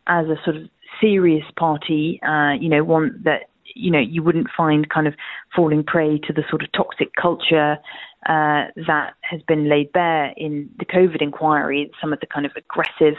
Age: 30-49